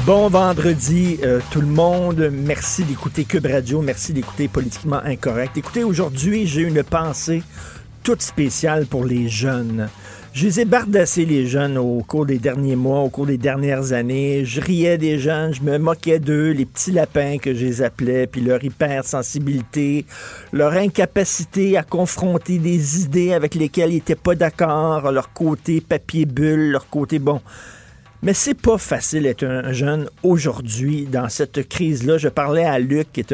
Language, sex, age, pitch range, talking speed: French, male, 50-69, 130-165 Hz, 165 wpm